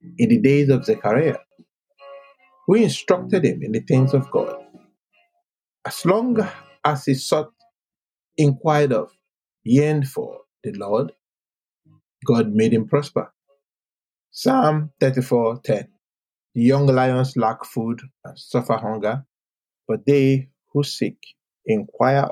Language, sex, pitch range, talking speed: English, male, 120-170 Hz, 115 wpm